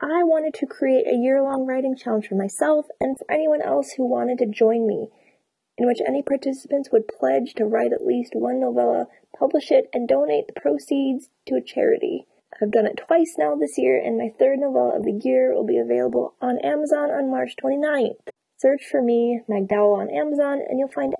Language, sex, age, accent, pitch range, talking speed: English, female, 20-39, American, 215-280 Hz, 200 wpm